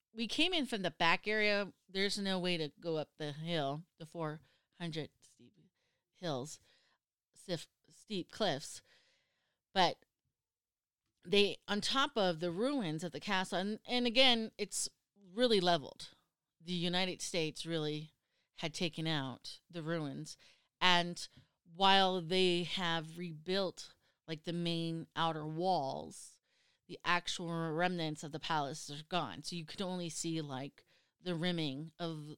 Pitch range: 155-190 Hz